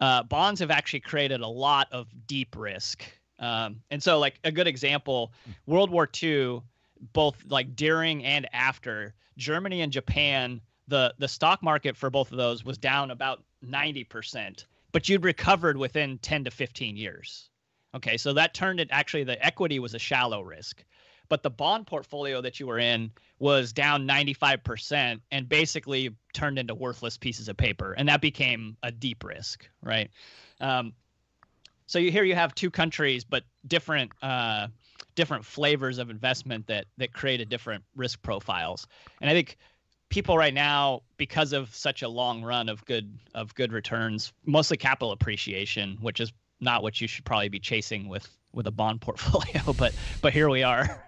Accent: American